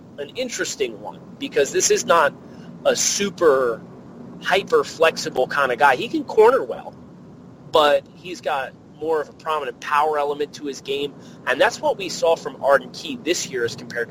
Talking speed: 175 wpm